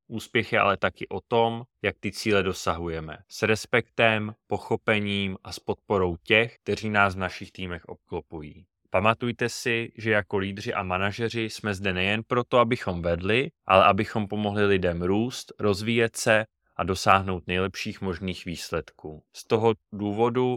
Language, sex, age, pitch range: Czech, male, 20-39, 95-115 Hz